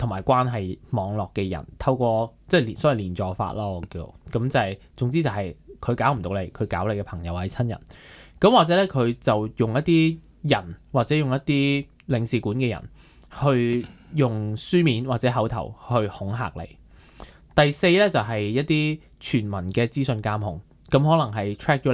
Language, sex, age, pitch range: Chinese, male, 20-39, 105-140 Hz